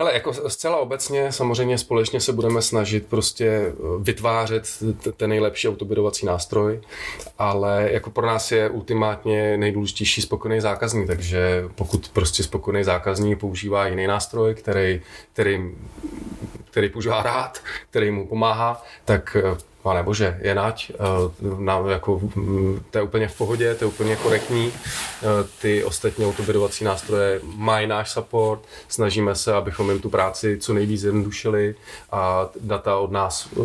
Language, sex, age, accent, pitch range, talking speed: Czech, male, 20-39, native, 100-115 Hz, 135 wpm